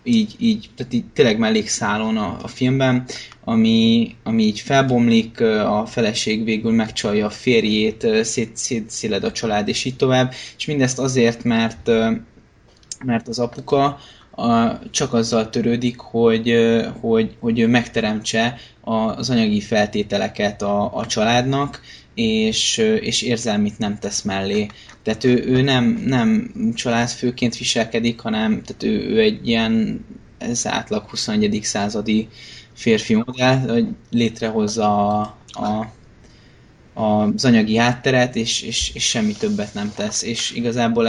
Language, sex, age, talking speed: Hungarian, male, 20-39, 120 wpm